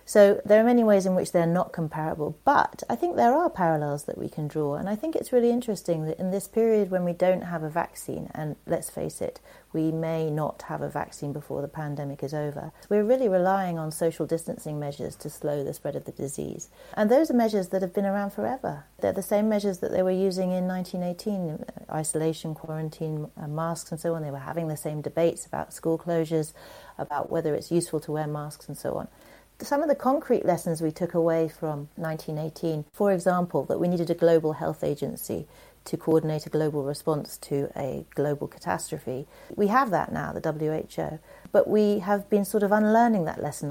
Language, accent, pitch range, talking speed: English, British, 155-195 Hz, 210 wpm